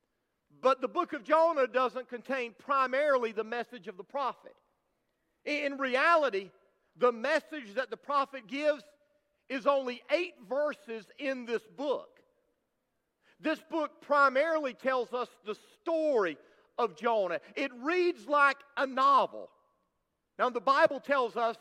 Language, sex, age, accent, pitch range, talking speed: English, male, 40-59, American, 225-290 Hz, 130 wpm